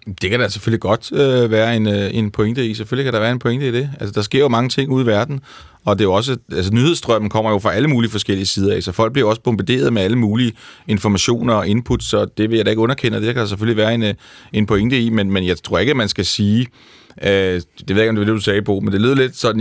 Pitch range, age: 100-120 Hz, 30-49